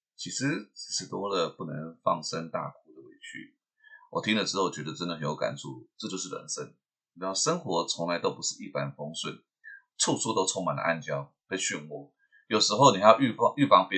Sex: male